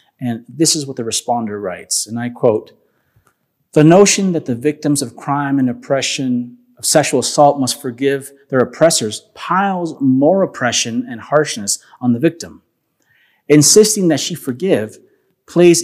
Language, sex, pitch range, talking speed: English, male, 120-150 Hz, 150 wpm